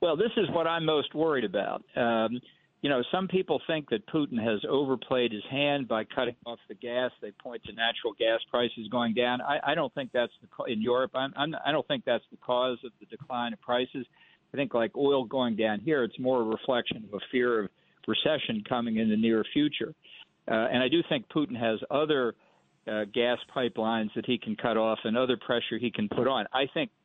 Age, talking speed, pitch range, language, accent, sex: 50-69, 225 wpm, 110-130 Hz, English, American, male